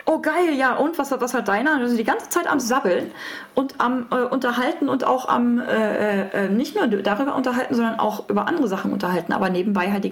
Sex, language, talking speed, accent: female, German, 225 wpm, German